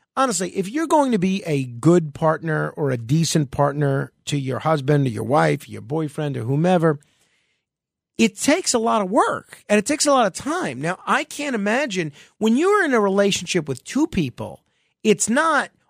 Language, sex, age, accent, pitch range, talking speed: English, male, 40-59, American, 160-235 Hz, 190 wpm